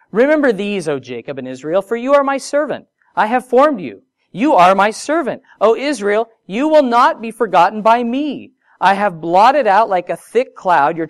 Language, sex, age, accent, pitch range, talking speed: English, male, 40-59, American, 150-230 Hz, 200 wpm